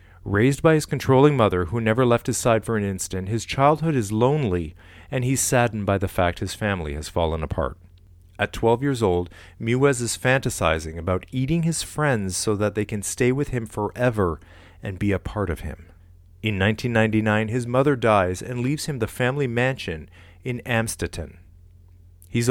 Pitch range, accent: 90-125 Hz, American